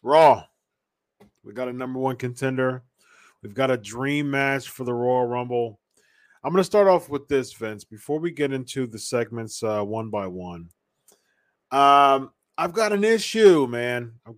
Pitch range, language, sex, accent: 115-145 Hz, English, male, American